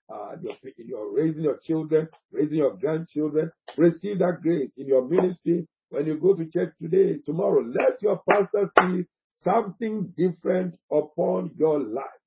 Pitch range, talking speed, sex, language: 135-185 Hz, 150 wpm, male, English